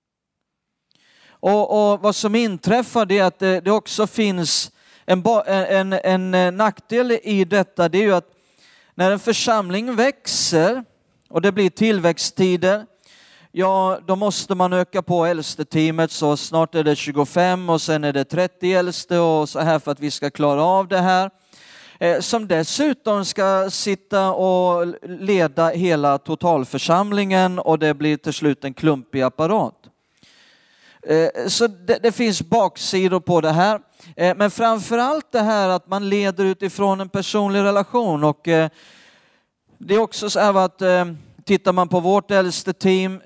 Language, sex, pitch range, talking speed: Swedish, male, 160-200 Hz, 155 wpm